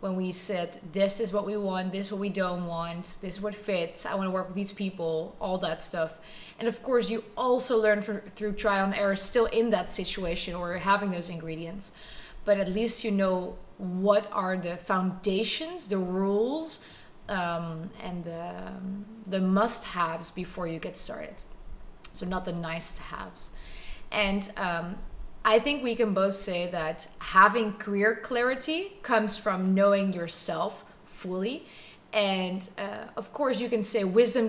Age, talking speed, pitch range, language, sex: 20-39, 170 wpm, 185-225 Hz, English, female